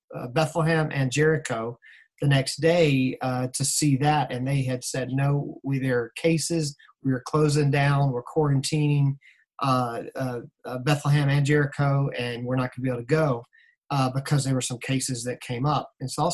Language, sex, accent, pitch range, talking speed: English, male, American, 130-155 Hz, 195 wpm